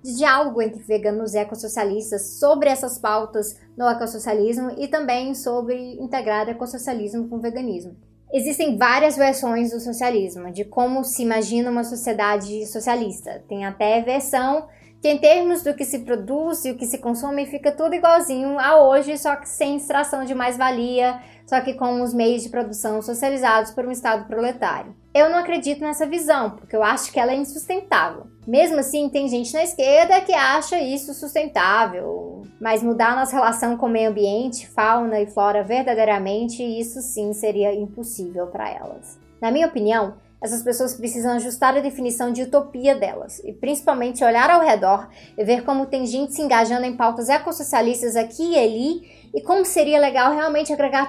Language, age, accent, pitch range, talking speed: Portuguese, 20-39, Brazilian, 225-285 Hz, 170 wpm